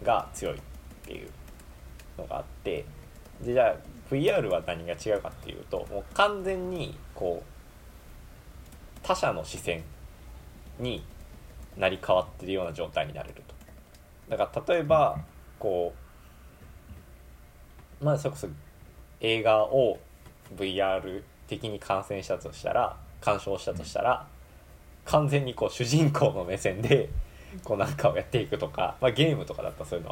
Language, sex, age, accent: Japanese, male, 20-39, native